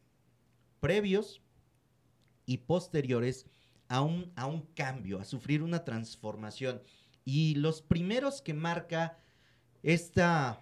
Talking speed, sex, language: 100 wpm, male, Spanish